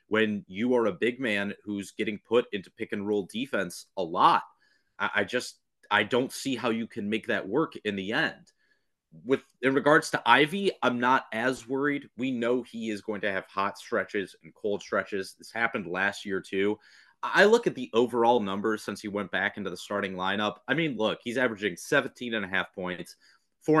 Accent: American